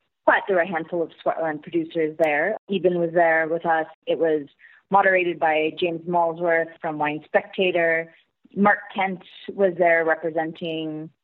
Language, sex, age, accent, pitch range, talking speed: English, female, 30-49, American, 165-195 Hz, 150 wpm